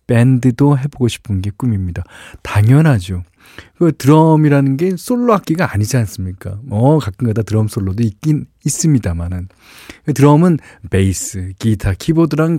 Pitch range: 95-135 Hz